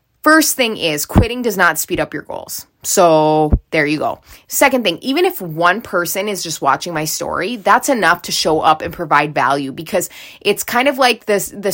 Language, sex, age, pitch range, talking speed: English, female, 20-39, 165-215 Hz, 205 wpm